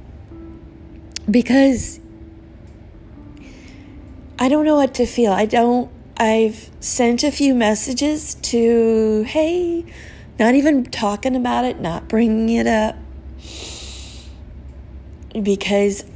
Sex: female